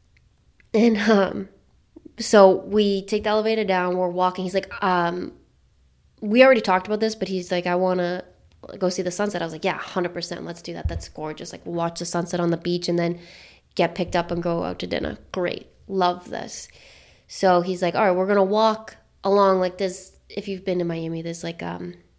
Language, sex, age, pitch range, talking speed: English, female, 20-39, 175-225 Hz, 215 wpm